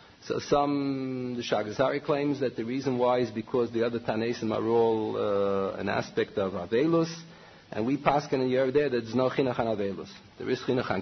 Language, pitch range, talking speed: English, 110-155 Hz, 195 wpm